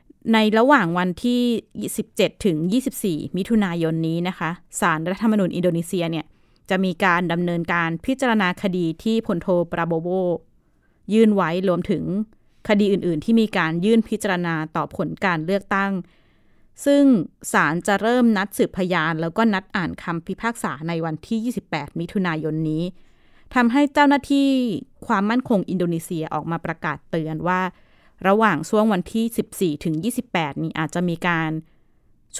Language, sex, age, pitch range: Thai, female, 20-39, 165-215 Hz